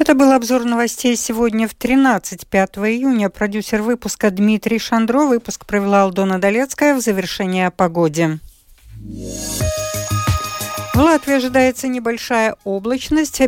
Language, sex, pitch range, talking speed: Russian, female, 185-255 Hz, 110 wpm